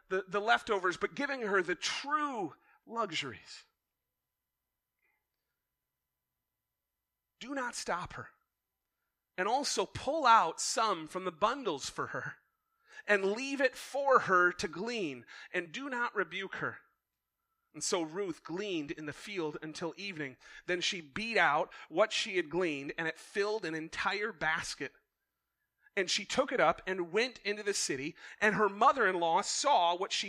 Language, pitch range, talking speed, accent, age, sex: English, 175-260 Hz, 145 wpm, American, 30-49, male